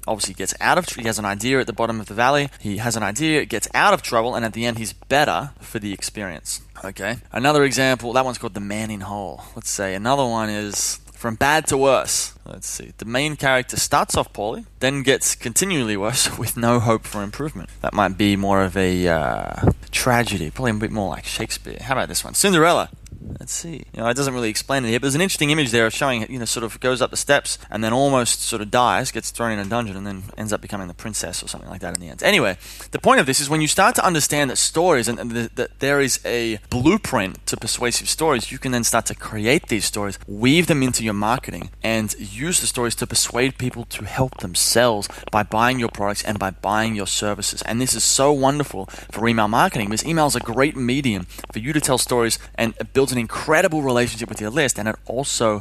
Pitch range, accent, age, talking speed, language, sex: 105-130 Hz, Australian, 20-39, 245 wpm, English, male